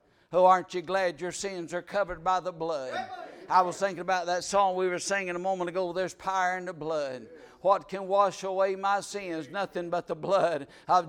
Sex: male